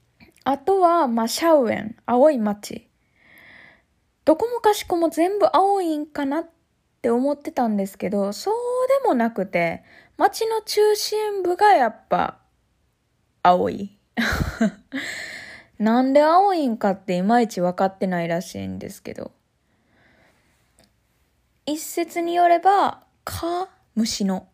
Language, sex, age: Japanese, female, 20-39